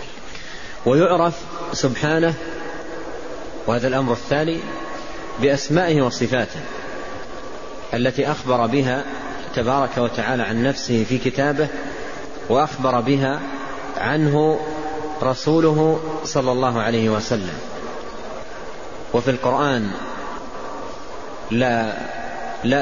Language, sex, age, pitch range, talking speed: Arabic, male, 40-59, 120-150 Hz, 70 wpm